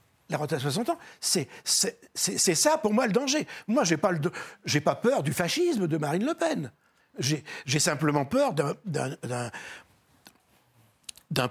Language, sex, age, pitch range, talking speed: French, male, 60-79, 155-245 Hz, 175 wpm